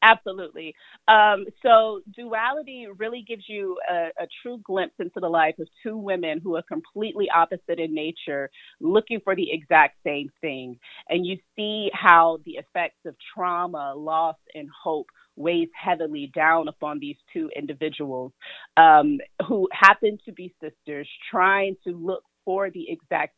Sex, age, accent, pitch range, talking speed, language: female, 30-49, American, 160-210 Hz, 150 wpm, English